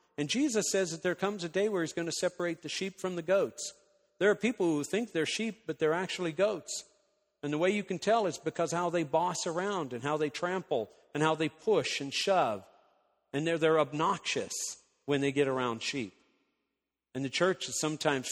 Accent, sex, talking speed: American, male, 215 wpm